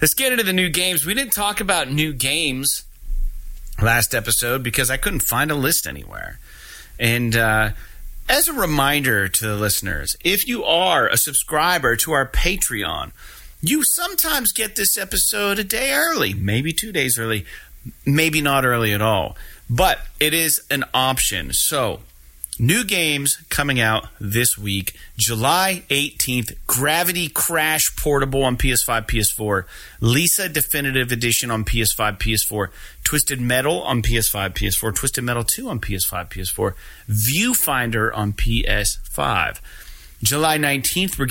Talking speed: 140 wpm